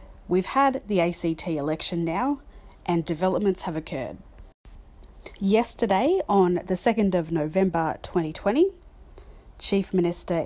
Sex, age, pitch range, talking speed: female, 30-49, 155-185 Hz, 110 wpm